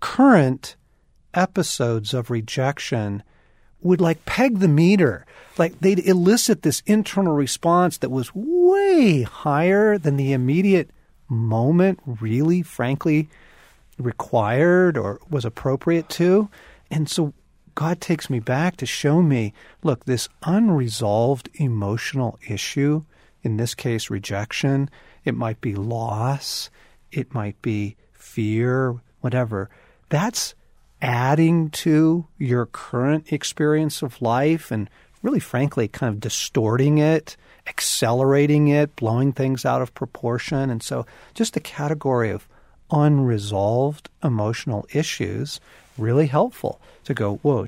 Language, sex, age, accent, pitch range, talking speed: English, male, 40-59, American, 115-160 Hz, 115 wpm